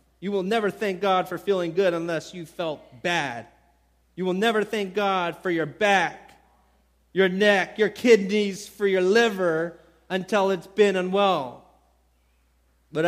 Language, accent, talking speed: English, American, 145 wpm